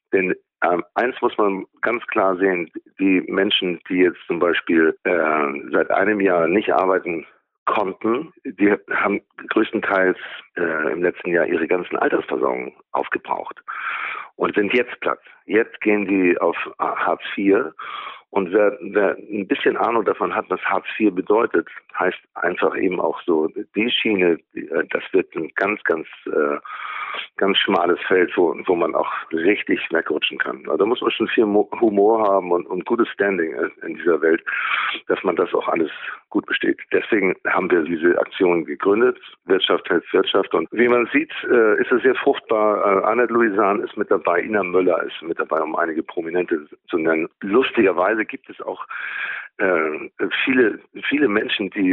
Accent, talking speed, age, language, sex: German, 165 wpm, 50-69, German, male